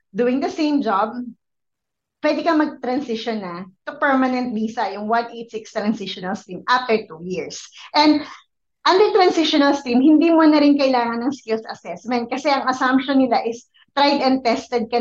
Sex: female